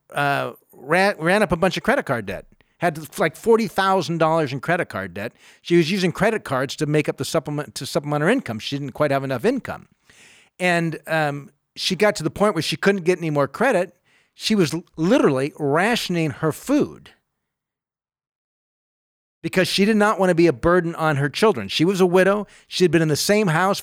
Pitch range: 150-195 Hz